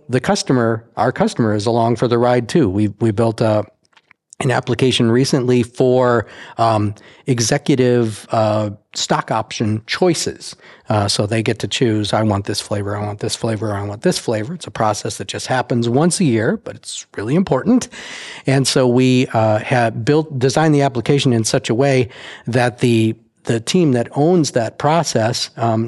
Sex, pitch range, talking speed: male, 115-145 Hz, 180 wpm